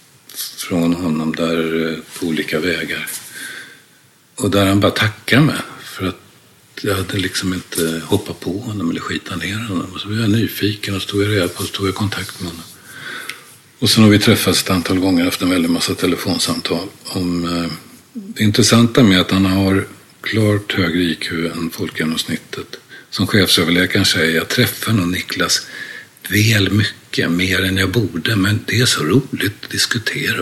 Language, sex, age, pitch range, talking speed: English, male, 50-69, 90-110 Hz, 170 wpm